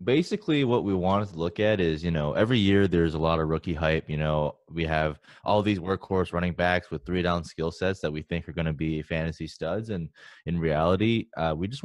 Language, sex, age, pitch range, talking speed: English, male, 20-39, 80-90 Hz, 235 wpm